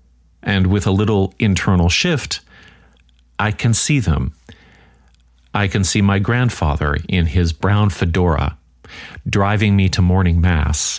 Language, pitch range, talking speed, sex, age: English, 80-100 Hz, 130 wpm, male, 40-59